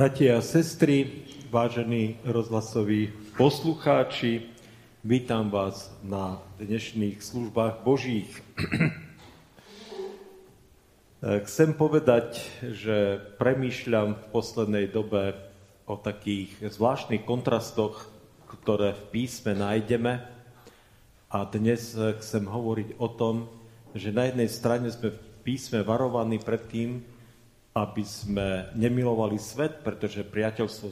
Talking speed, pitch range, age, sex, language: 95 wpm, 100-120 Hz, 40-59, male, Czech